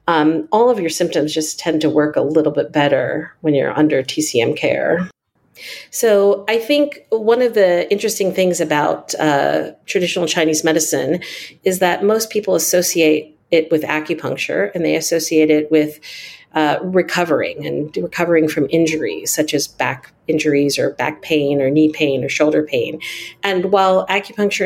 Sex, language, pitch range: female, English, 155-195 Hz